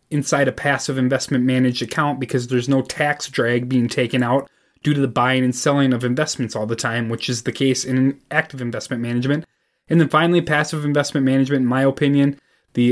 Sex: male